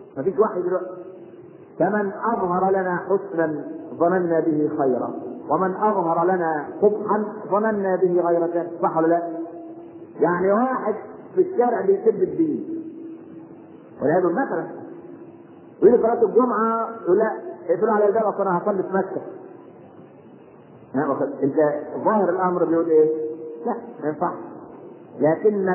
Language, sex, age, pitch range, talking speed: Arabic, male, 50-69, 165-225 Hz, 115 wpm